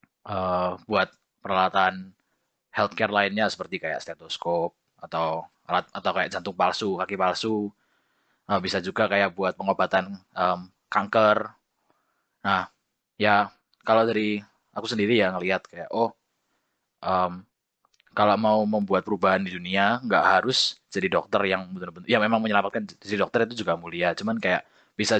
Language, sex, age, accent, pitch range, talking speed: Indonesian, male, 20-39, native, 95-115 Hz, 140 wpm